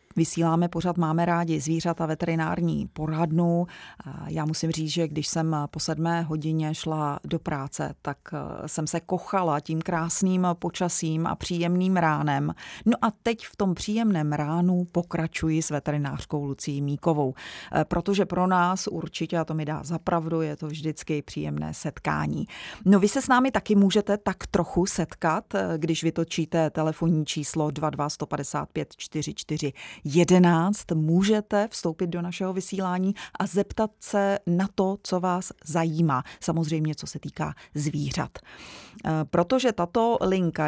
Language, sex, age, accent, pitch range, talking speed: Czech, female, 30-49, native, 155-185 Hz, 140 wpm